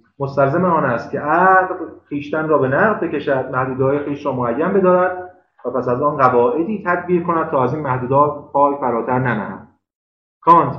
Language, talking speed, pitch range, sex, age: Persian, 165 wpm, 130-175 Hz, male, 30-49